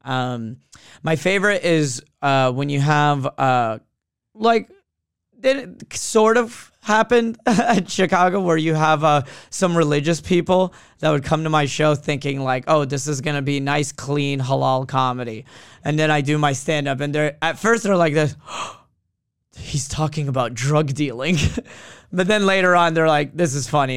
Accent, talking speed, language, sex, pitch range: American, 175 wpm, English, male, 130-160 Hz